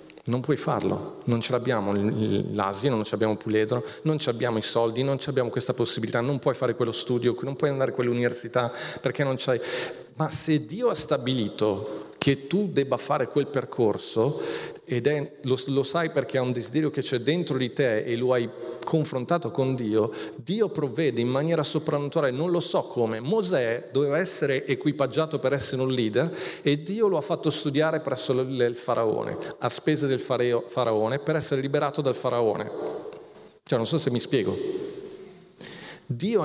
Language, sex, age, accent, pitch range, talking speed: Italian, male, 40-59, native, 125-160 Hz, 180 wpm